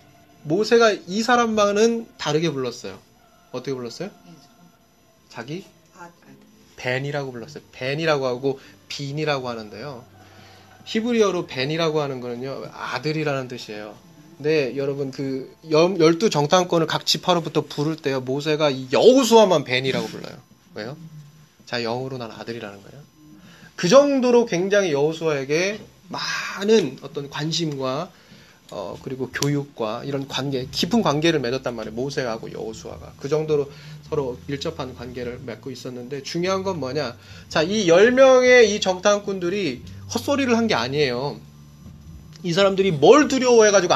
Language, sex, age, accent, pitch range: Korean, male, 20-39, native, 120-185 Hz